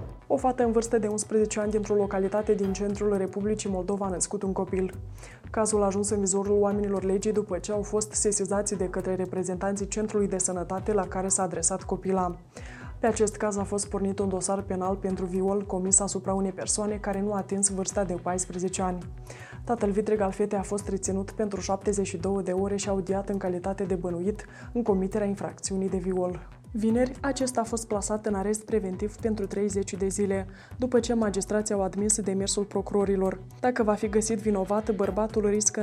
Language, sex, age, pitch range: Romanian, female, 20-39, 195-215 Hz